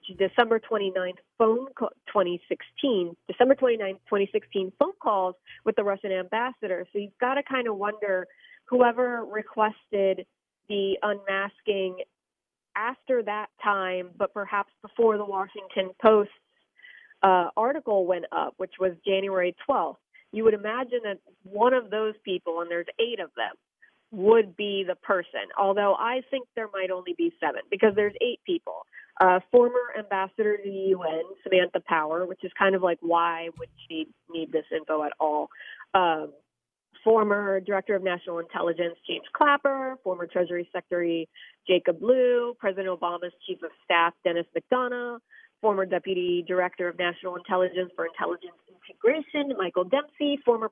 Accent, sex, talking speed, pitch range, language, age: American, female, 145 wpm, 180-225 Hz, English, 30-49